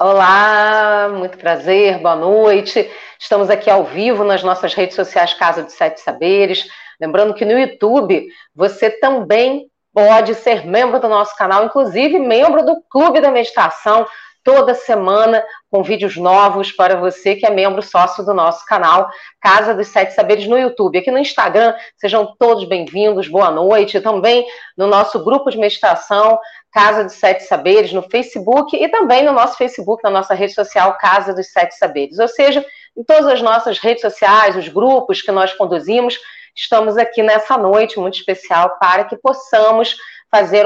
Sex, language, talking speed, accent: female, Portuguese, 165 wpm, Brazilian